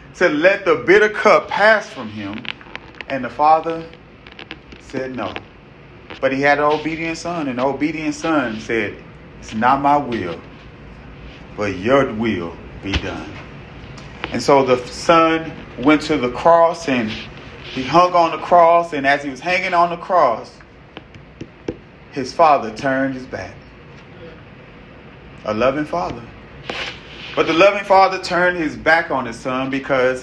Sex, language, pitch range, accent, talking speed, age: male, English, 125-160 Hz, American, 145 wpm, 30-49